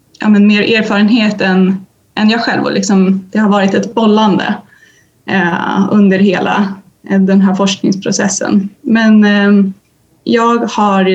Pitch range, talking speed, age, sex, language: 185-215 Hz, 135 wpm, 20-39, female, Swedish